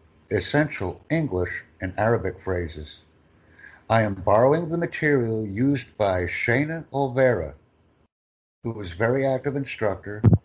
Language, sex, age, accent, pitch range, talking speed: English, male, 60-79, American, 85-125 Hz, 110 wpm